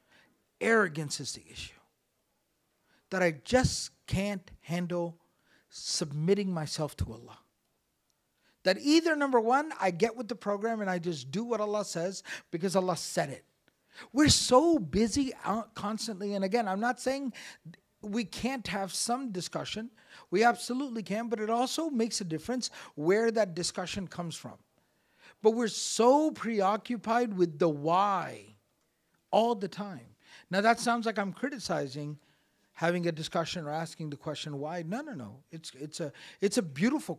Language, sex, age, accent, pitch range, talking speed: English, male, 50-69, American, 160-230 Hz, 155 wpm